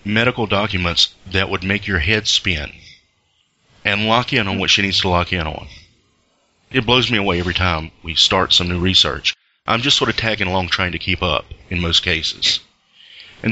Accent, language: American, English